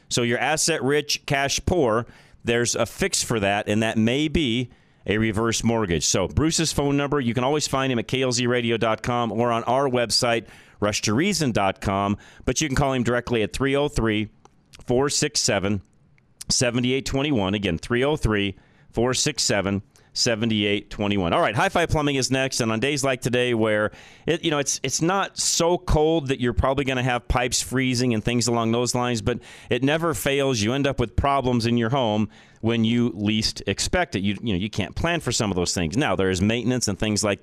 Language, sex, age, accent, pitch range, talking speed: English, male, 40-59, American, 105-135 Hz, 180 wpm